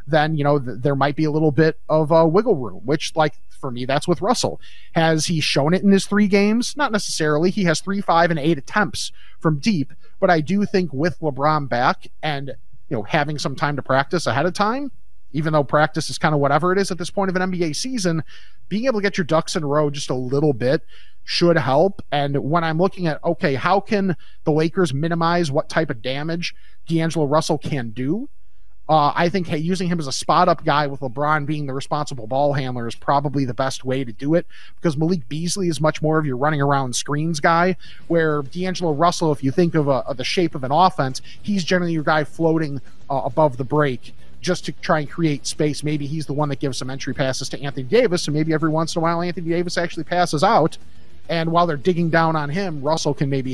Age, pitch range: 30-49, 145-175 Hz